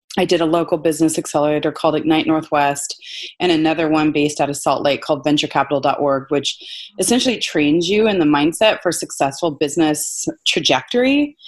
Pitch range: 150-200 Hz